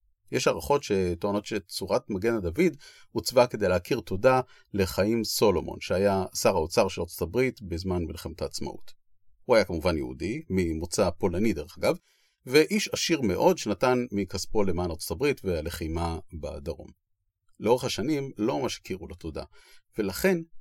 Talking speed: 135 wpm